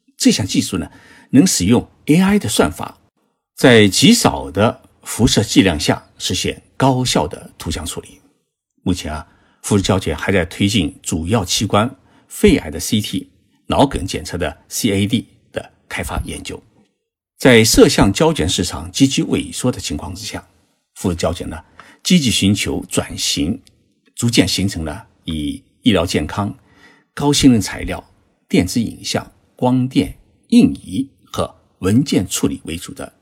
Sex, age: male, 50-69